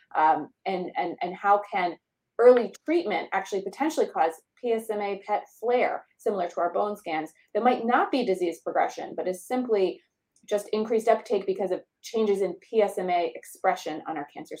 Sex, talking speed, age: female, 165 wpm, 30-49